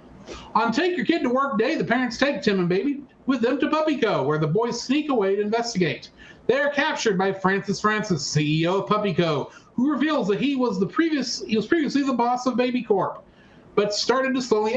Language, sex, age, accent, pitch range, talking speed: English, male, 40-59, American, 195-285 Hz, 220 wpm